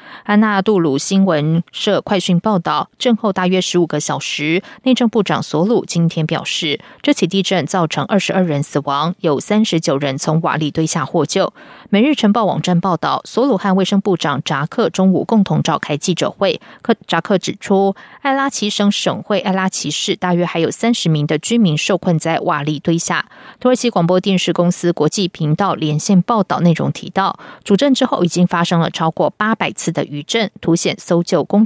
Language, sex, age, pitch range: German, female, 20-39, 160-200 Hz